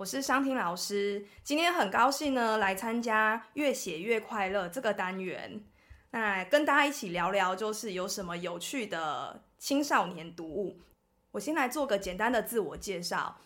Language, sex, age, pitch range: Chinese, female, 20-39, 185-240 Hz